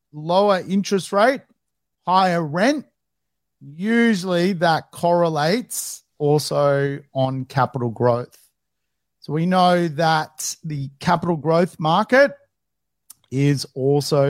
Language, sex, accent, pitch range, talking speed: English, male, Australian, 125-185 Hz, 90 wpm